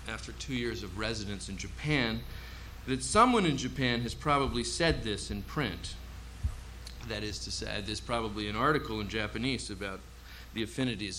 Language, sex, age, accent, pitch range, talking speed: English, male, 40-59, American, 95-125 Hz, 160 wpm